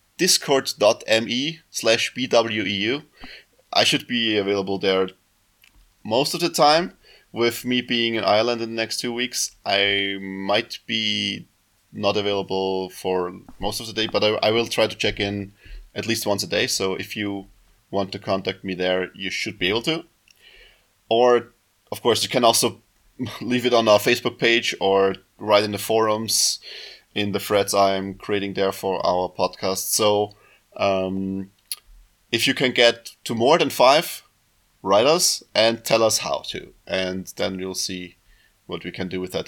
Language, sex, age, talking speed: English, male, 20-39, 170 wpm